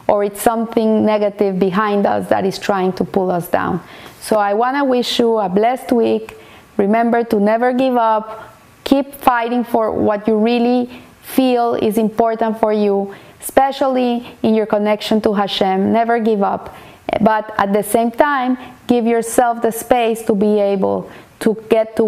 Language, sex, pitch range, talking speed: English, female, 210-255 Hz, 170 wpm